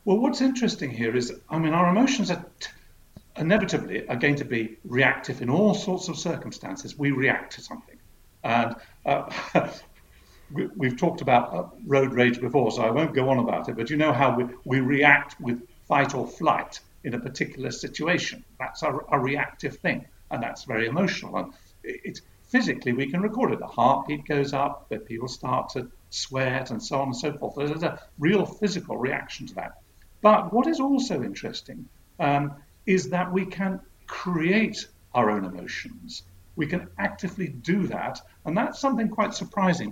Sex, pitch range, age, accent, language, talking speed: male, 130-190 Hz, 50-69, British, English, 180 wpm